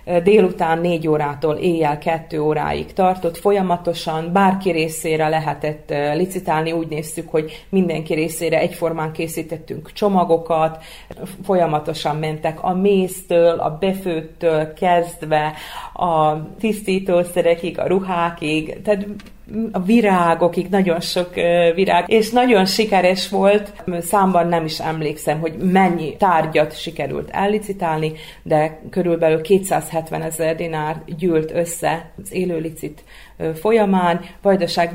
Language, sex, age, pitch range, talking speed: Hungarian, female, 40-59, 160-185 Hz, 105 wpm